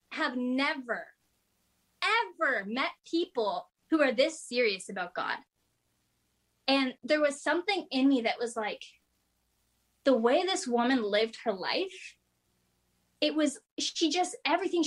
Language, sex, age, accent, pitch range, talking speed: English, female, 10-29, American, 210-280 Hz, 130 wpm